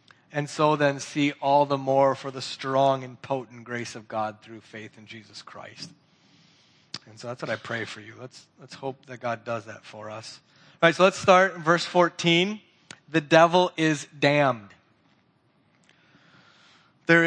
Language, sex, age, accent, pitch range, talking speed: English, male, 30-49, American, 130-160 Hz, 175 wpm